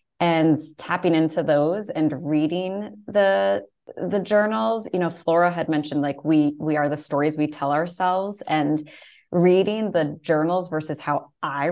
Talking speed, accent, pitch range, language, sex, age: 155 wpm, American, 150-180 Hz, English, female, 20-39